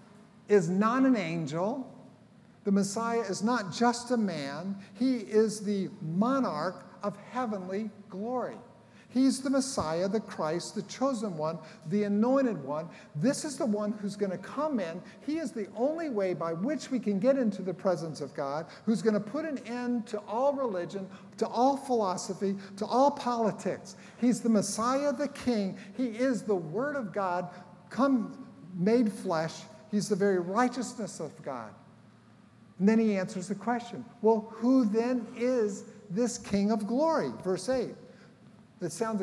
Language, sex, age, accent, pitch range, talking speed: English, male, 50-69, American, 190-245 Hz, 160 wpm